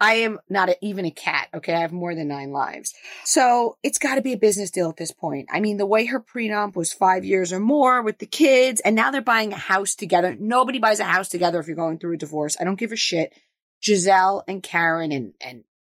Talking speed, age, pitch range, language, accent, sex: 250 wpm, 30-49, 170-225 Hz, English, American, female